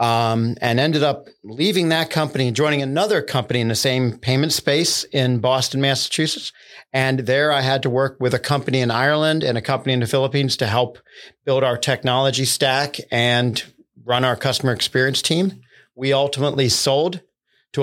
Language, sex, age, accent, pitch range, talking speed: English, male, 50-69, American, 120-140 Hz, 170 wpm